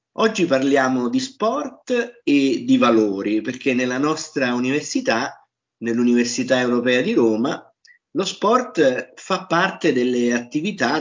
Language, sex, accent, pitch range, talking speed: Italian, male, native, 115-140 Hz, 115 wpm